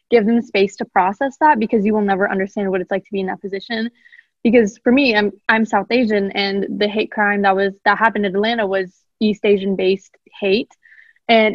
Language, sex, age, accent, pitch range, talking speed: English, female, 20-39, American, 195-230 Hz, 220 wpm